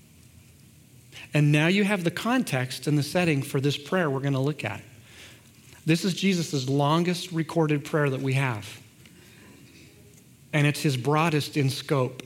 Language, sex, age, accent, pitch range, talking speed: English, male, 40-59, American, 130-170 Hz, 155 wpm